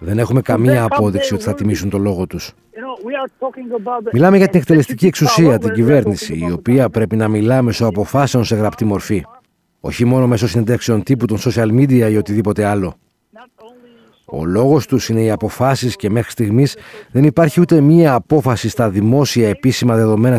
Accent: native